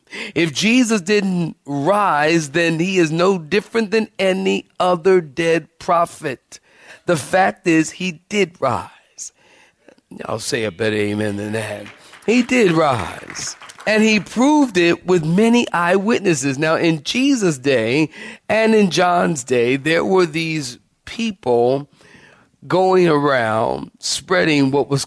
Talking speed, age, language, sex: 130 wpm, 40-59, English, male